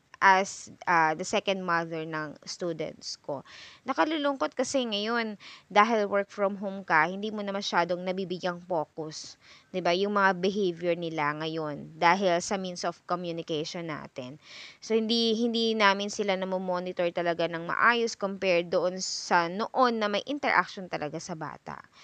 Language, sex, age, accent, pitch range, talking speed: Filipino, female, 20-39, native, 170-210 Hz, 150 wpm